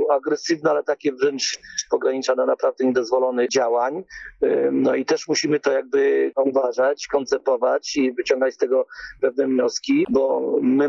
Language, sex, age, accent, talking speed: Polish, male, 40-59, native, 130 wpm